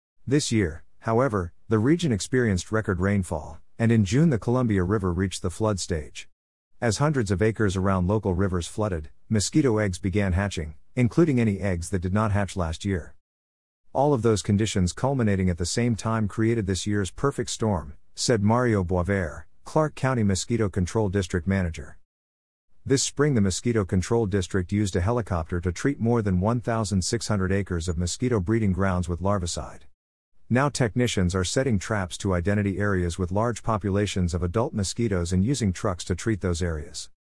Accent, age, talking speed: American, 50-69, 165 wpm